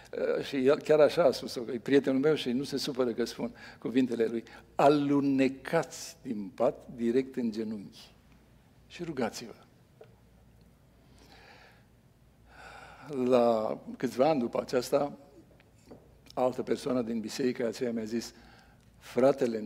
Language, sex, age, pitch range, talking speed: Romanian, male, 60-79, 120-165 Hz, 115 wpm